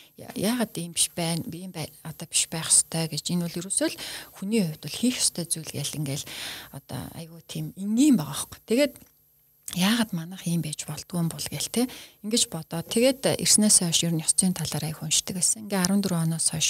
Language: Russian